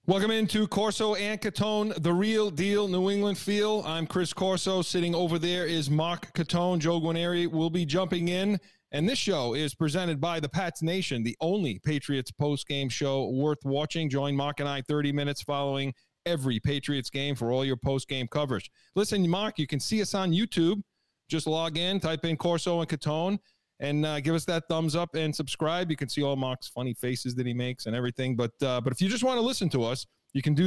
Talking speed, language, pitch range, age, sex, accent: 215 wpm, English, 140-175 Hz, 40-59, male, American